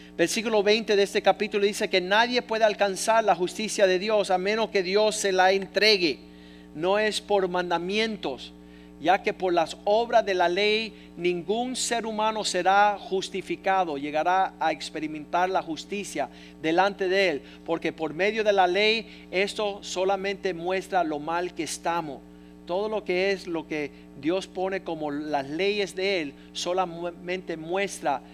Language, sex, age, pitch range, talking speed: Spanish, male, 50-69, 165-210 Hz, 155 wpm